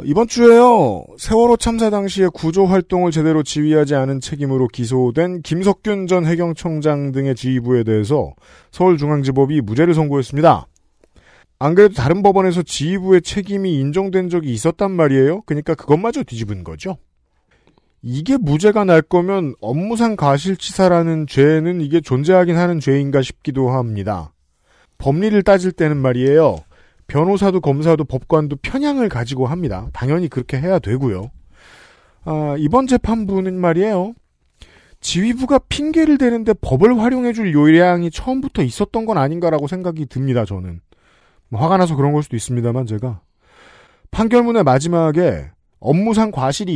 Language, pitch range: Korean, 135-195 Hz